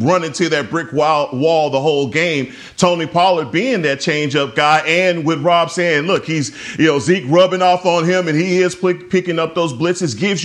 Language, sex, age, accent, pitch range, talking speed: English, male, 40-59, American, 140-175 Hz, 200 wpm